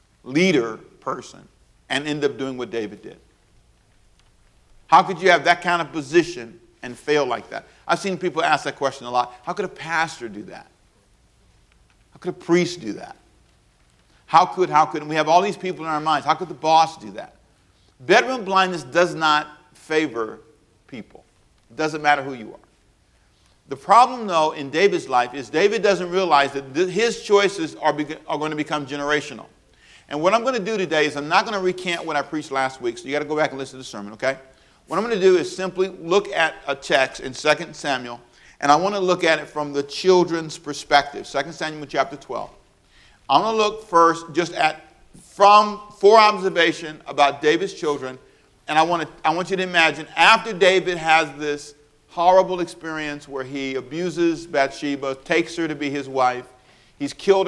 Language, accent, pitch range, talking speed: English, American, 140-180 Hz, 200 wpm